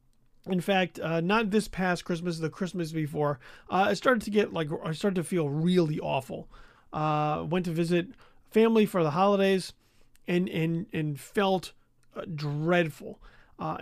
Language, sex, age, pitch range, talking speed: English, male, 40-59, 155-205 Hz, 160 wpm